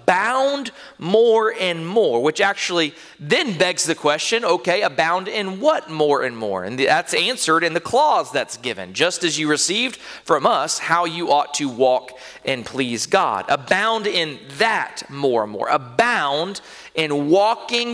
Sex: male